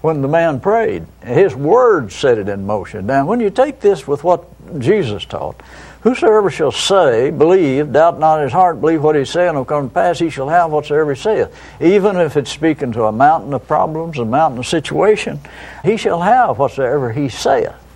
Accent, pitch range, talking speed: American, 130-190 Hz, 205 wpm